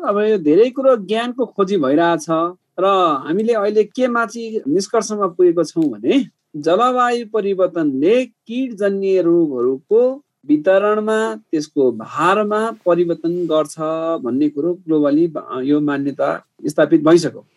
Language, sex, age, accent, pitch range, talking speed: English, male, 50-69, Indian, 155-215 Hz, 115 wpm